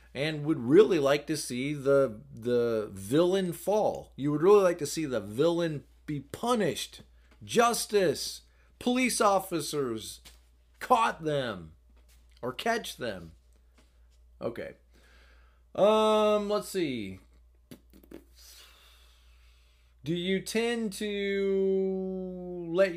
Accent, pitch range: American, 105-170 Hz